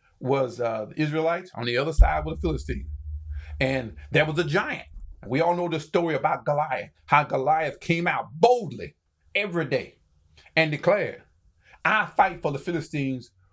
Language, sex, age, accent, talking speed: English, male, 40-59, American, 165 wpm